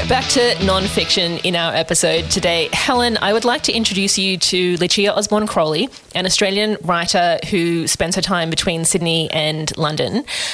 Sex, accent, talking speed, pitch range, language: female, Australian, 165 wpm, 165-195 Hz, English